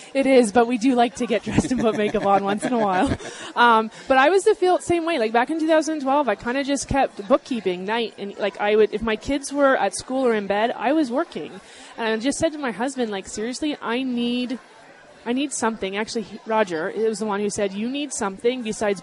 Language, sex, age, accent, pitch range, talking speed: English, female, 20-39, American, 200-245 Hz, 245 wpm